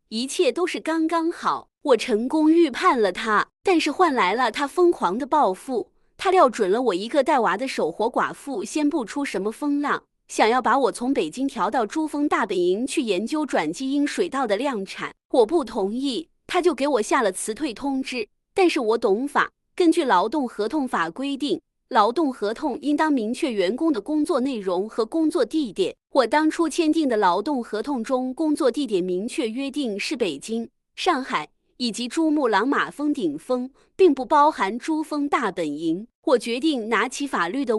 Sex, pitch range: female, 230-325 Hz